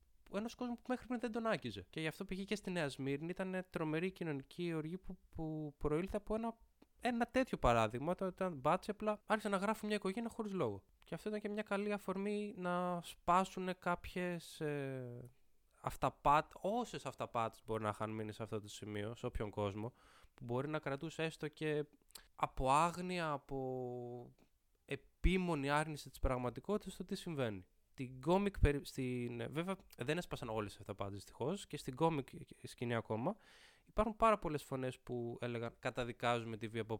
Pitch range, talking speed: 120-190 Hz, 165 wpm